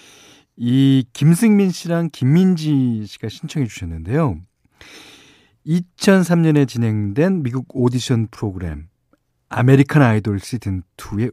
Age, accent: 40-59, native